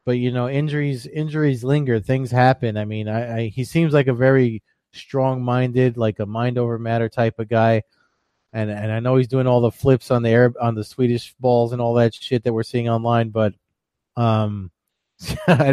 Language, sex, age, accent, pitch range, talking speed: English, male, 30-49, American, 115-135 Hz, 205 wpm